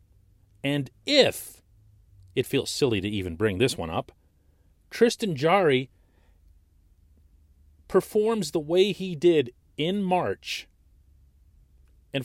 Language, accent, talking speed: English, American, 105 wpm